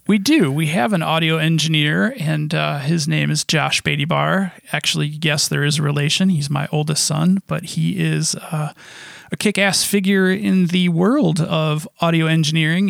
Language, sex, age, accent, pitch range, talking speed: English, male, 30-49, American, 150-175 Hz, 175 wpm